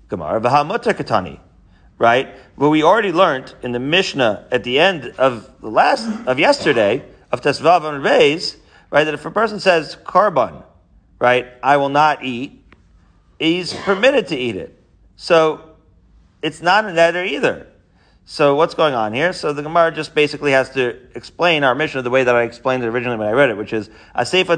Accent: American